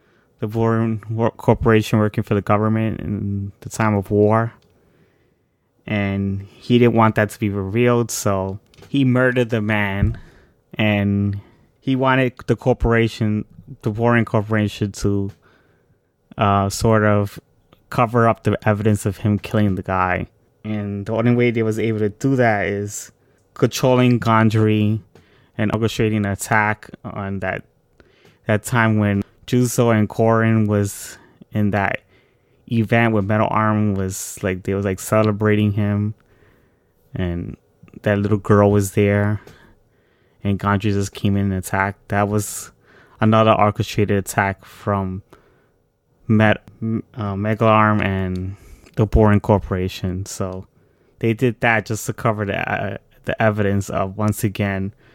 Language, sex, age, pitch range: English, male, 20-39, 100-115 Hz